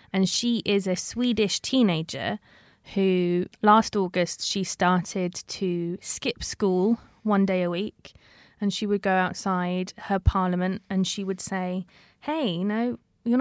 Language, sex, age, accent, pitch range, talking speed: English, female, 20-39, British, 185-215 Hz, 150 wpm